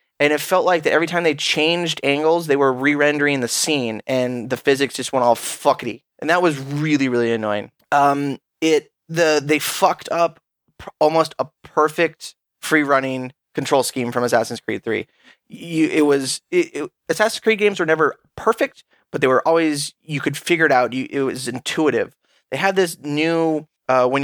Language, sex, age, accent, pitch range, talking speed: English, male, 20-39, American, 140-165 Hz, 190 wpm